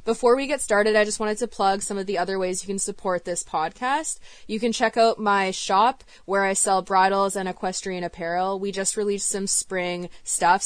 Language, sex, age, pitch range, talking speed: English, female, 20-39, 180-215 Hz, 215 wpm